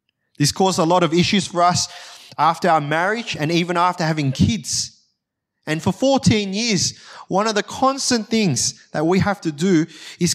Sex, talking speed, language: male, 180 wpm, English